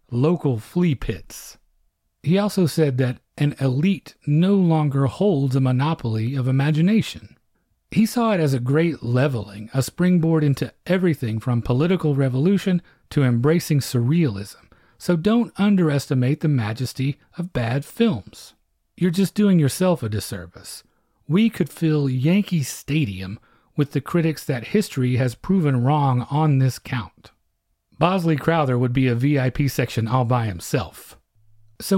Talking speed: 140 wpm